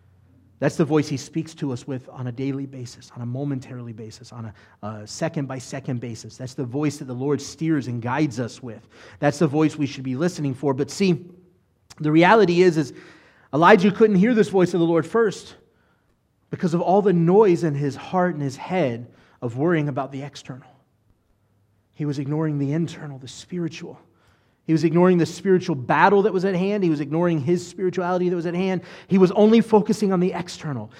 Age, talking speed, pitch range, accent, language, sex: 30-49, 205 wpm, 135-185 Hz, American, English, male